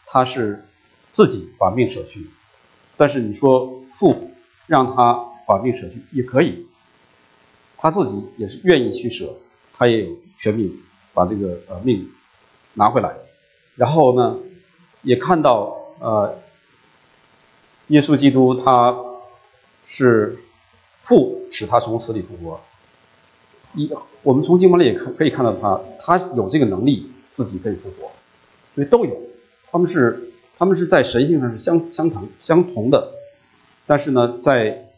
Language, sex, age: English, male, 50-69